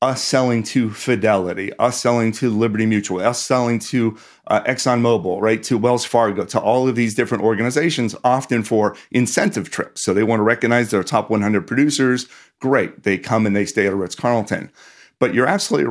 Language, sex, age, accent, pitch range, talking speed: English, male, 40-59, American, 105-125 Hz, 180 wpm